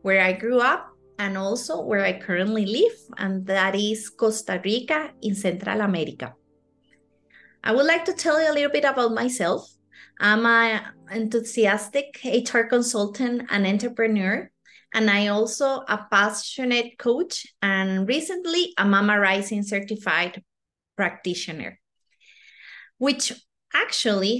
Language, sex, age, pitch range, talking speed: English, female, 30-49, 200-260 Hz, 125 wpm